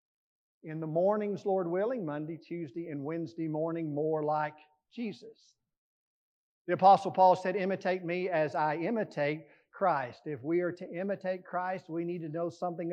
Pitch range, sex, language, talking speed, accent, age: 155-195 Hz, male, English, 160 wpm, American, 50-69